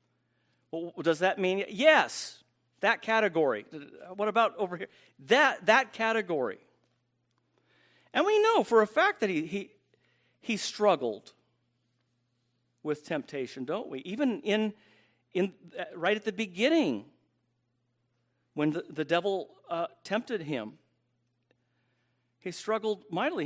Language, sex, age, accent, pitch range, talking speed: English, male, 50-69, American, 120-195 Hz, 115 wpm